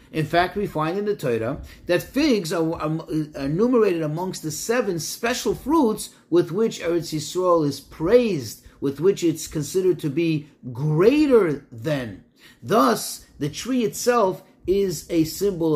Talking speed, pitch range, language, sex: 150 wpm, 145-220 Hz, English, male